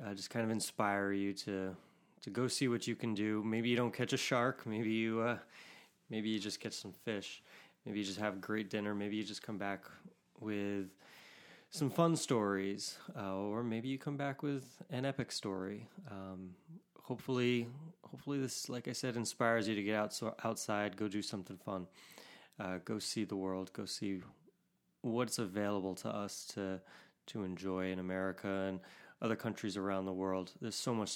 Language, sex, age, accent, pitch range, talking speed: English, male, 20-39, American, 100-130 Hz, 190 wpm